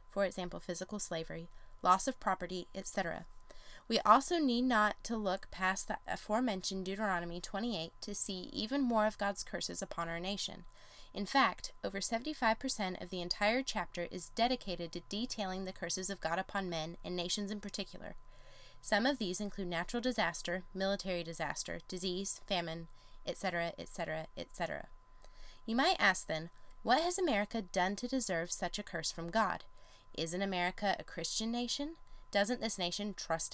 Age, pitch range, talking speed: 20-39, 175-215 Hz, 155 wpm